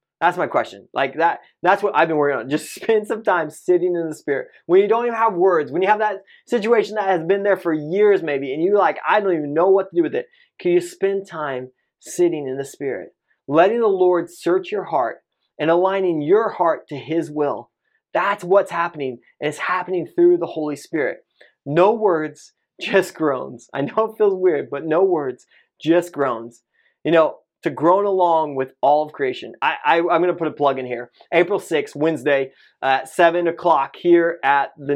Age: 20-39